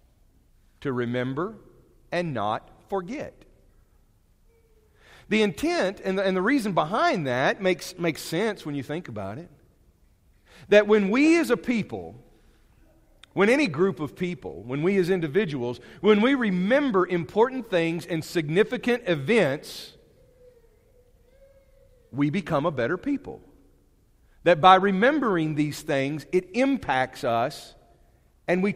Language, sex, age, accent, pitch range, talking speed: English, male, 50-69, American, 140-210 Hz, 125 wpm